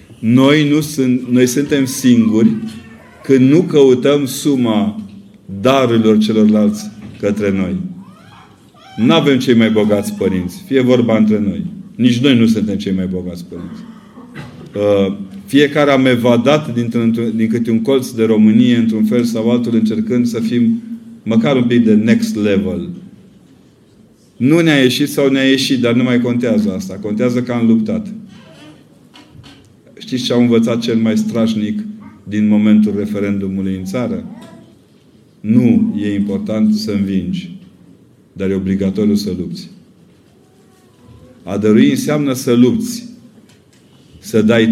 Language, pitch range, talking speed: Romanian, 110-155 Hz, 130 wpm